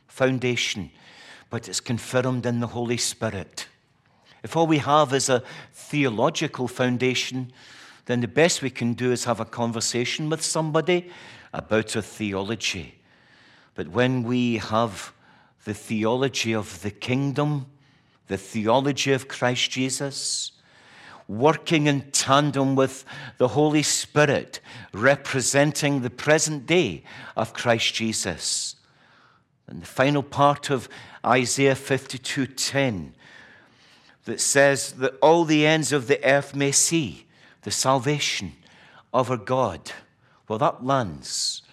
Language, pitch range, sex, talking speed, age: English, 115-140 Hz, male, 120 wpm, 60-79